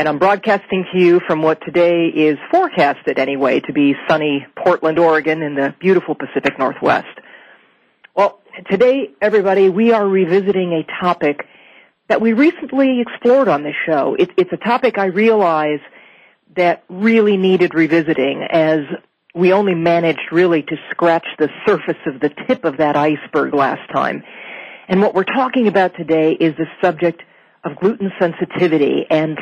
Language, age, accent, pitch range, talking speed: English, 40-59, American, 155-195 Hz, 155 wpm